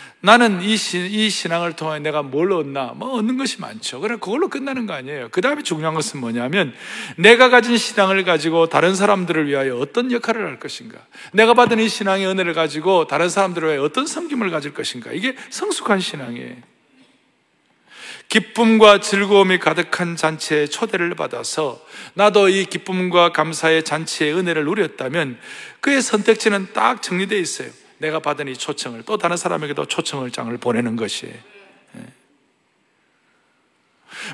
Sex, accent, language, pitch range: male, native, Korean, 160-230 Hz